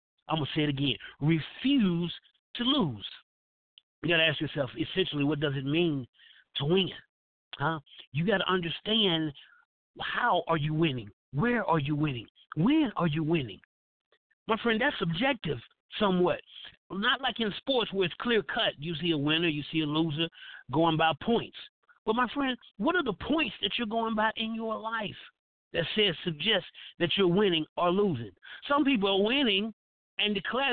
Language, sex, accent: English, male, American